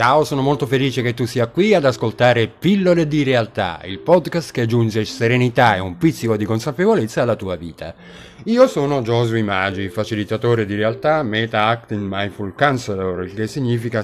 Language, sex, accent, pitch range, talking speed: Italian, male, native, 95-135 Hz, 165 wpm